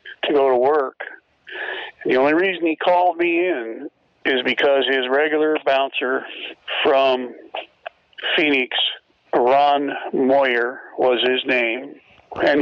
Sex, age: male, 50-69